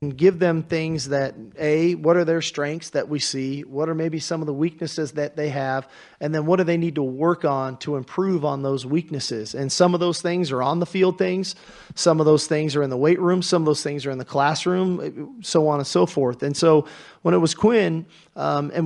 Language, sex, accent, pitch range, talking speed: English, male, American, 145-170 Hz, 240 wpm